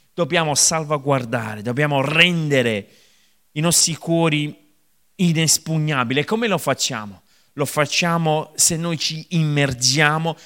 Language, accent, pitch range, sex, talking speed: Italian, native, 125-160 Hz, male, 100 wpm